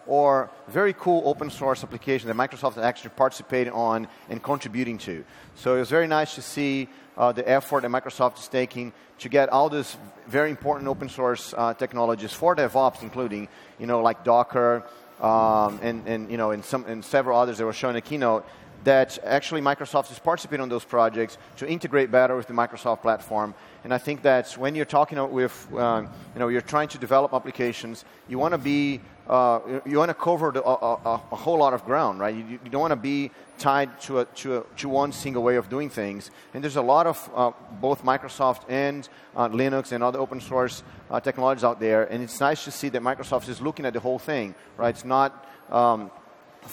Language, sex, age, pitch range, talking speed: English, male, 30-49, 115-140 Hz, 210 wpm